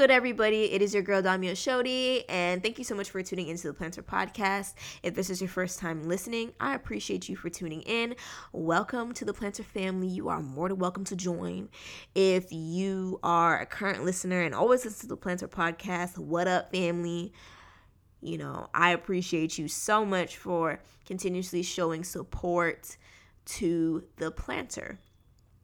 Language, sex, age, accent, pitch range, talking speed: English, female, 20-39, American, 165-200 Hz, 175 wpm